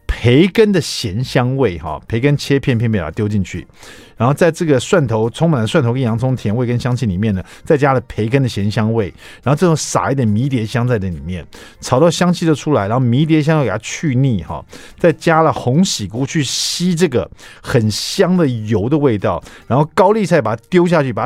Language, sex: Chinese, male